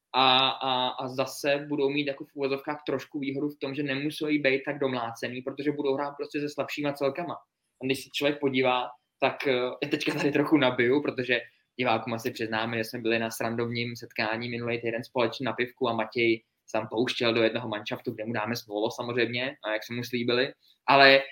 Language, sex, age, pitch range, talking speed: Czech, male, 20-39, 115-145 Hz, 190 wpm